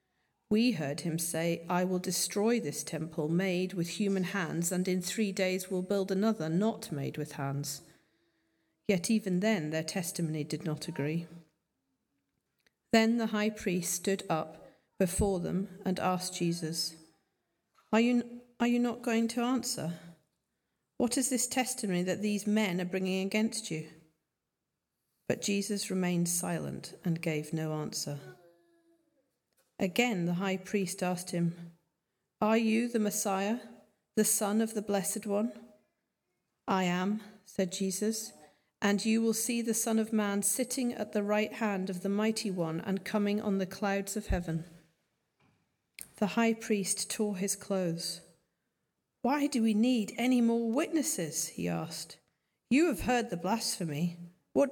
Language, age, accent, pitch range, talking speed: English, 40-59, British, 170-220 Hz, 145 wpm